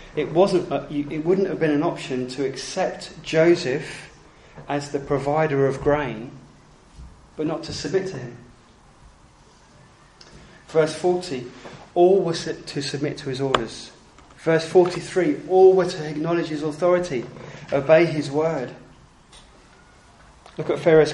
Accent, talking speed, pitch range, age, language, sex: British, 125 wpm, 135-165 Hz, 30-49, English, male